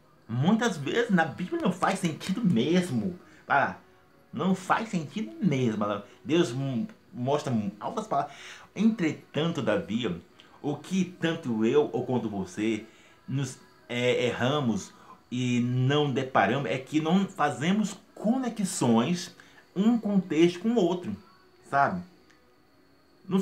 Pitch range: 125-195 Hz